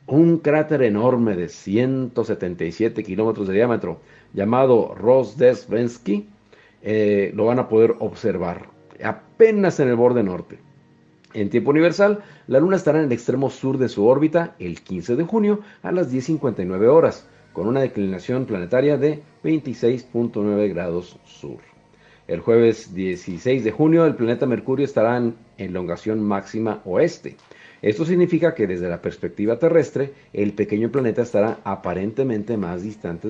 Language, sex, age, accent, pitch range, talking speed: Spanish, male, 50-69, Mexican, 105-150 Hz, 135 wpm